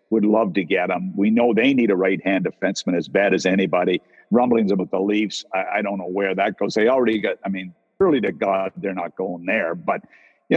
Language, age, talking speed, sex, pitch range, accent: English, 50-69, 240 wpm, male, 100-130 Hz, American